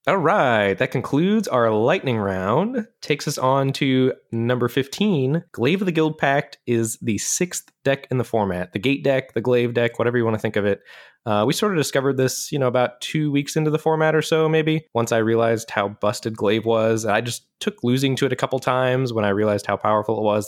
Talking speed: 230 wpm